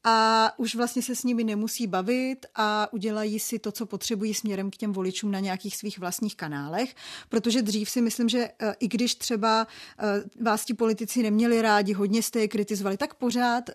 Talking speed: 185 wpm